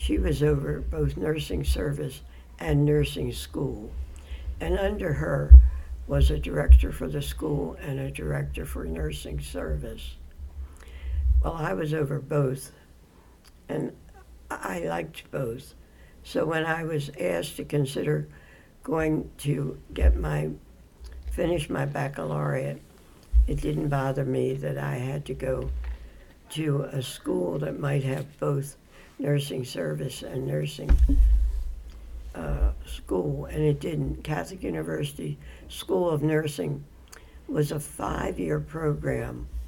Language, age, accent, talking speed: English, 60-79, American, 120 wpm